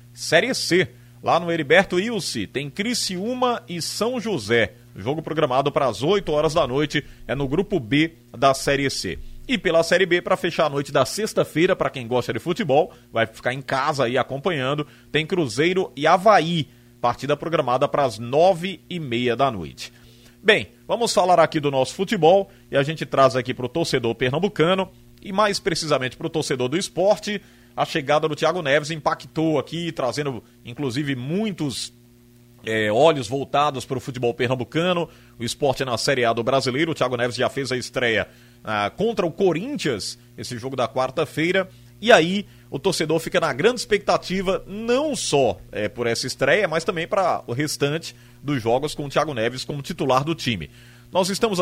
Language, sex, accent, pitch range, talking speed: Portuguese, male, Brazilian, 120-170 Hz, 180 wpm